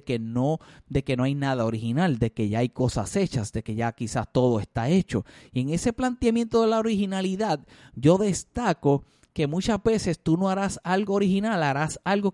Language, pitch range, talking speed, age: Spanish, 140-200 Hz, 195 wpm, 30-49